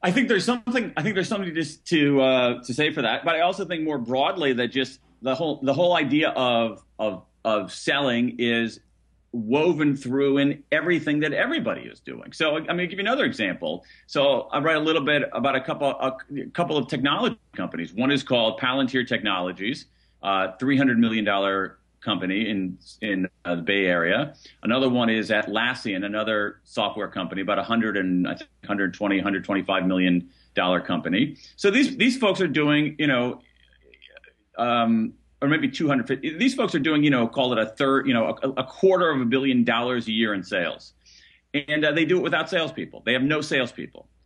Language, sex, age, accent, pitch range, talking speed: English, male, 40-59, American, 115-160 Hz, 195 wpm